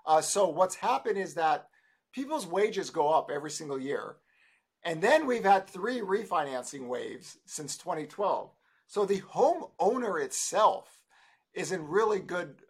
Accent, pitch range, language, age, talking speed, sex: American, 145-195 Hz, English, 50-69, 140 wpm, male